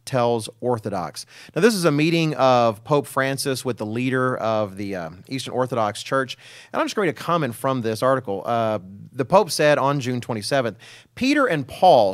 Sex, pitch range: male, 115-155 Hz